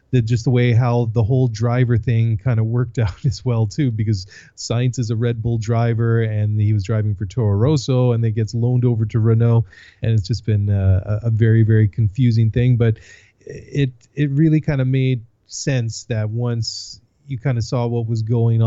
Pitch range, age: 105-125 Hz, 30-49